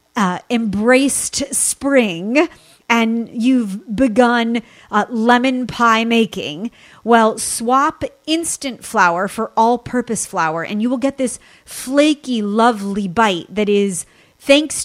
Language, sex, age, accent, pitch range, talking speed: English, female, 30-49, American, 205-255 Hz, 115 wpm